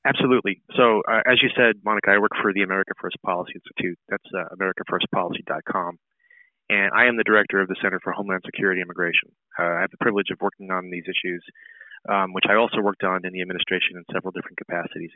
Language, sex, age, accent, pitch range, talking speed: English, male, 30-49, American, 90-105 Hz, 215 wpm